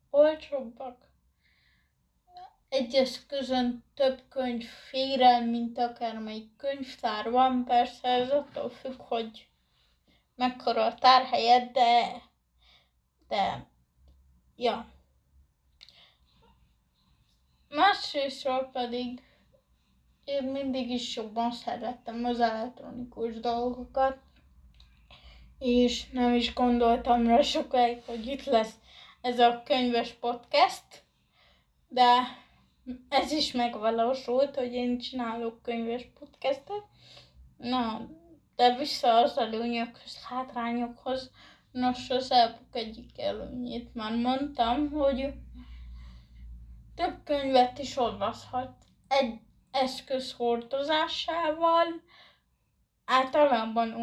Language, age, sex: Hungarian, 20-39, female